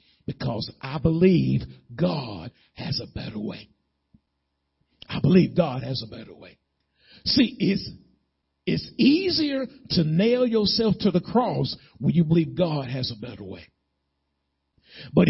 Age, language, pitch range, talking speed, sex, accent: 50-69, English, 160-240 Hz, 135 wpm, male, American